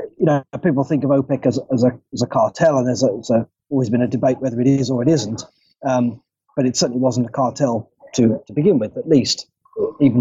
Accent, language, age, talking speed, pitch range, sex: British, English, 30-49, 240 wpm, 125-150 Hz, male